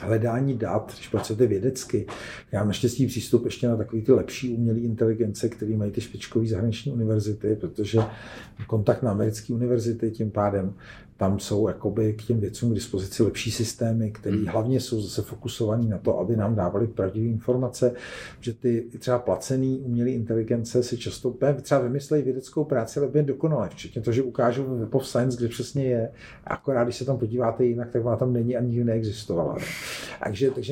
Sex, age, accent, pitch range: male, 50-69, native, 110-125 Hz